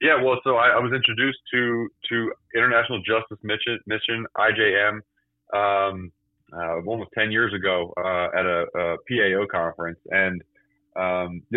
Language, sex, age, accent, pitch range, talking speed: English, male, 30-49, American, 90-115 Hz, 140 wpm